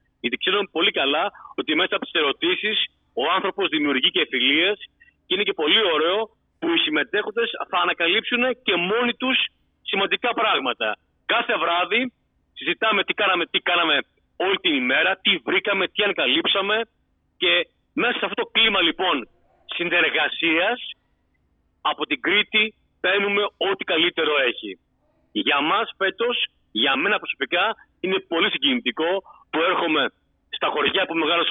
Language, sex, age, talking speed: Greek, male, 40-59, 140 wpm